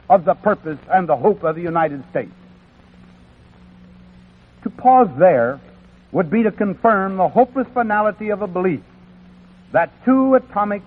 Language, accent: Chinese, American